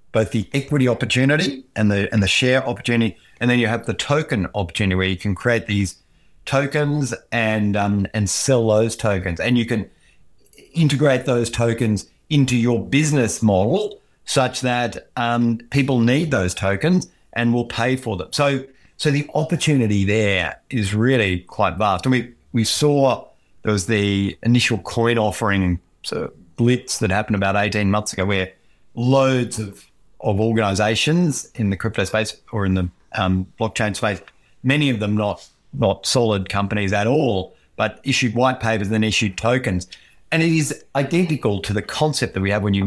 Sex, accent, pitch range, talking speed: male, Australian, 100-125 Hz, 170 wpm